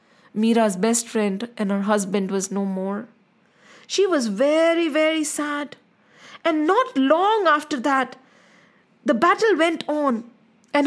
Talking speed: 135 wpm